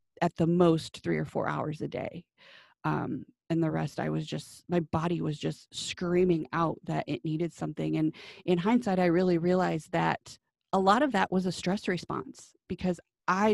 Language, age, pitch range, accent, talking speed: English, 30-49, 170-210 Hz, American, 190 wpm